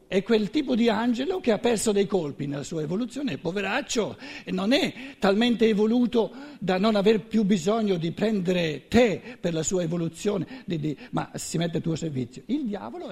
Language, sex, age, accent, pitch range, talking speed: Italian, male, 60-79, native, 165-250 Hz, 175 wpm